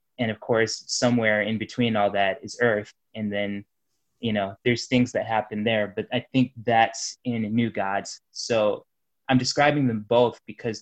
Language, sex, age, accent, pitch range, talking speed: English, male, 20-39, American, 105-120 Hz, 175 wpm